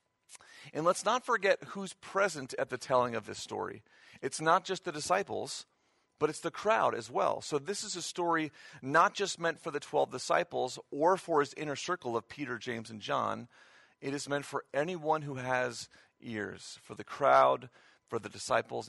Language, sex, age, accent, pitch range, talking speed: English, male, 40-59, American, 125-170 Hz, 185 wpm